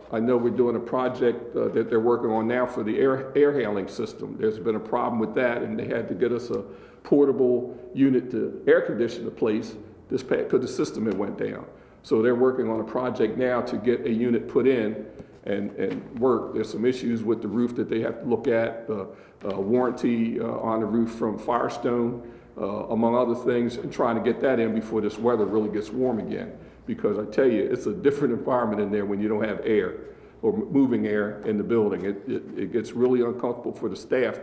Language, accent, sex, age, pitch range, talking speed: English, American, male, 50-69, 110-125 Hz, 225 wpm